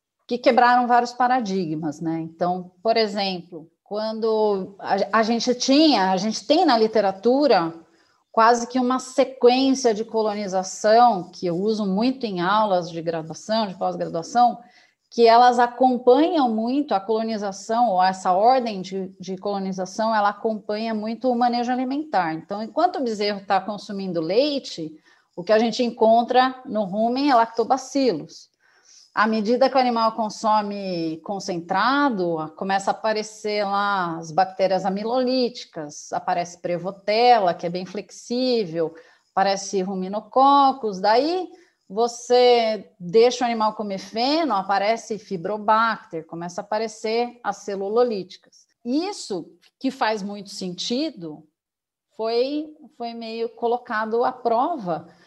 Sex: female